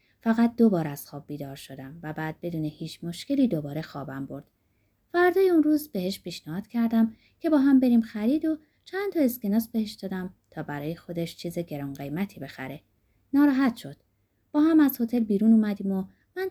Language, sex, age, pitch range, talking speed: Persian, female, 20-39, 150-245 Hz, 175 wpm